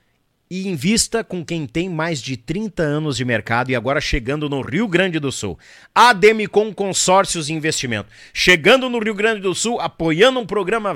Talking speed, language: 175 wpm, Portuguese